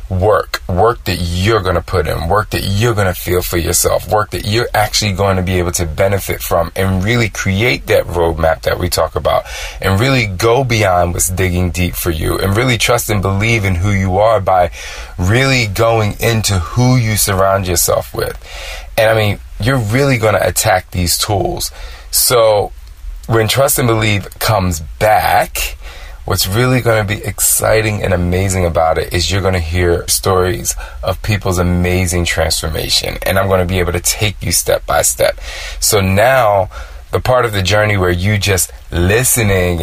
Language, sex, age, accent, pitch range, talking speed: English, male, 20-39, American, 85-105 Hz, 185 wpm